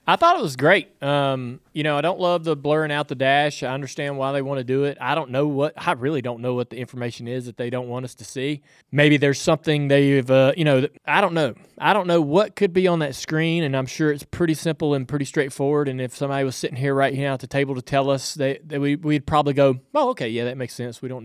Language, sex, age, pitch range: English, male, 20-39, 130-155 Hz